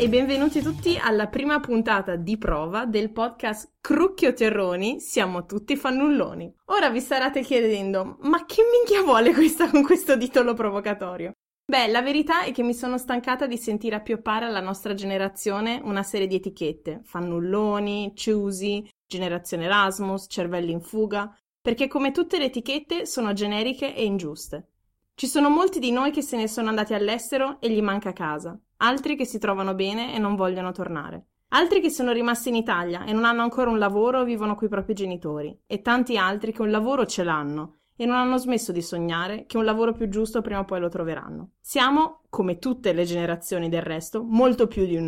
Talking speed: 185 wpm